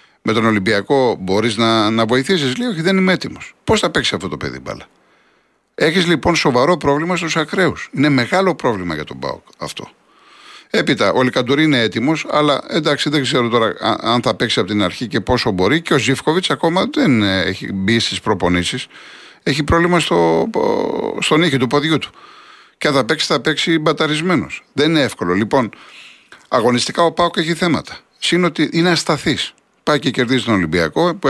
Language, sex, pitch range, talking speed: Greek, male, 115-160 Hz, 180 wpm